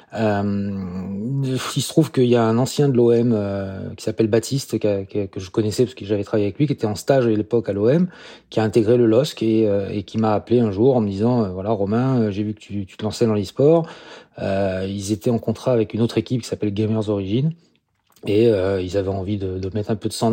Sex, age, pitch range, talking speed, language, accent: male, 30-49, 105-120 Hz, 260 wpm, French, French